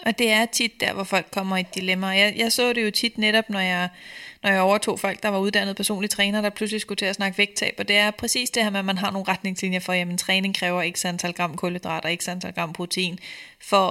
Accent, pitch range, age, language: native, 175-205 Hz, 20-39, Danish